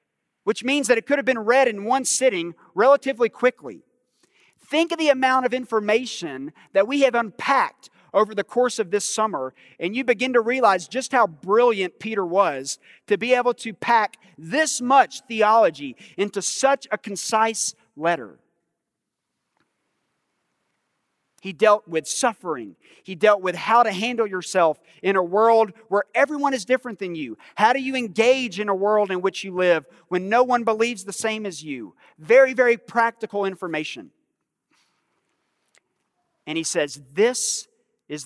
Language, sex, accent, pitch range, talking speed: English, male, American, 190-245 Hz, 155 wpm